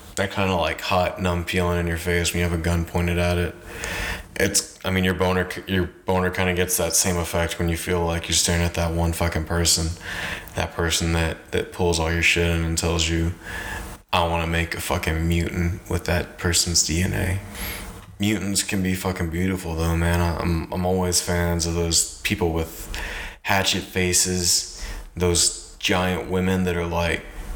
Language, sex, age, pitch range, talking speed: English, male, 20-39, 85-95 Hz, 190 wpm